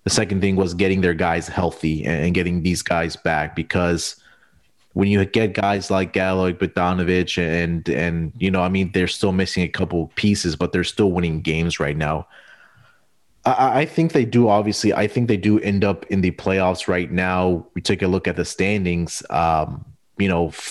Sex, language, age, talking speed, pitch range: male, English, 30-49, 195 wpm, 85-100 Hz